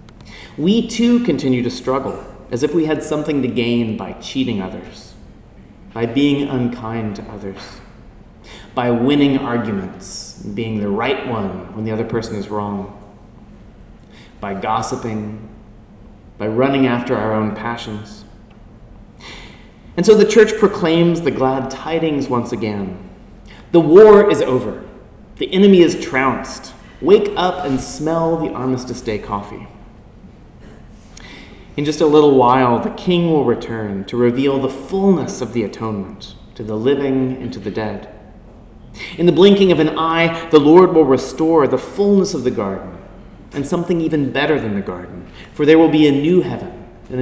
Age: 30-49